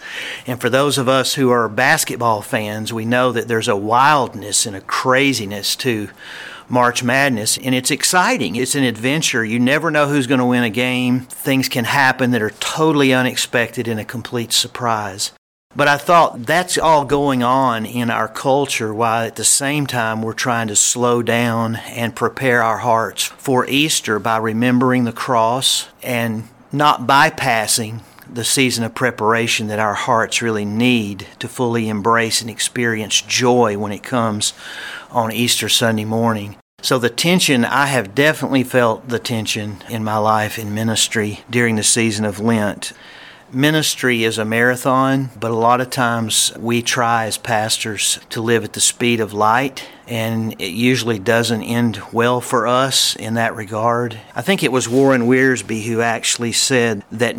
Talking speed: 170 wpm